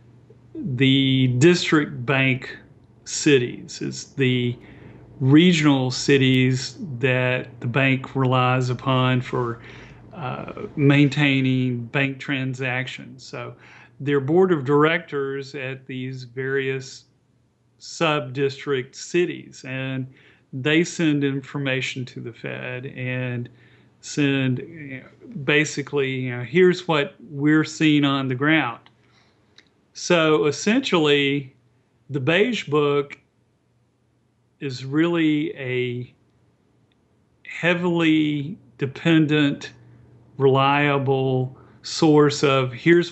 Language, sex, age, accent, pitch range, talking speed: English, male, 40-59, American, 130-150 Hz, 90 wpm